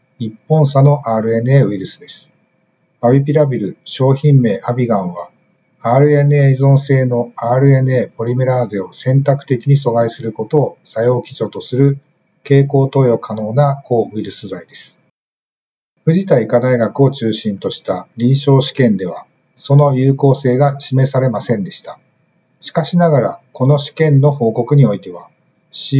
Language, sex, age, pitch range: Japanese, male, 50-69, 120-145 Hz